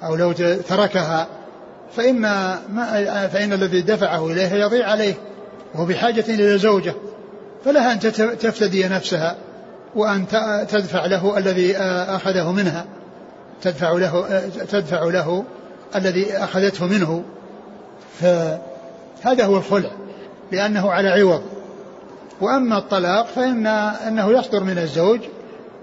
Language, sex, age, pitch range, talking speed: Arabic, male, 60-79, 175-205 Hz, 105 wpm